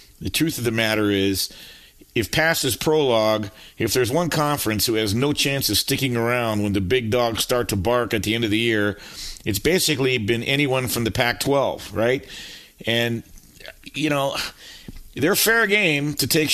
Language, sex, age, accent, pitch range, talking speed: English, male, 50-69, American, 105-135 Hz, 180 wpm